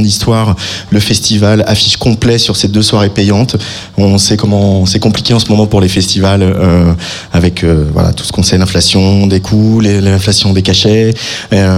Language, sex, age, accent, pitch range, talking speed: French, male, 20-39, French, 100-115 Hz, 185 wpm